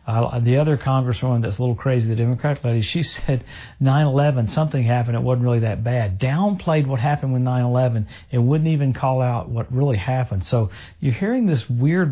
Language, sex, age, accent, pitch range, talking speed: English, male, 50-69, American, 110-145 Hz, 195 wpm